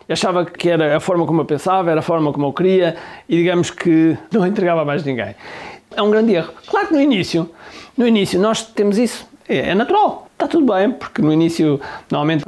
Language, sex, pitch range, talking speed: Portuguese, male, 160-210 Hz, 220 wpm